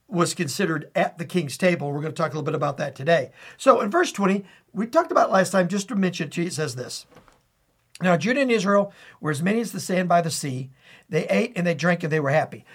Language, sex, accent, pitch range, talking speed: English, male, American, 165-210 Hz, 250 wpm